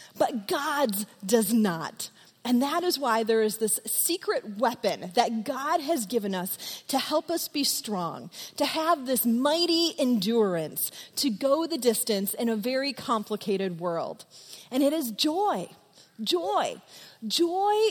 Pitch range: 210-300 Hz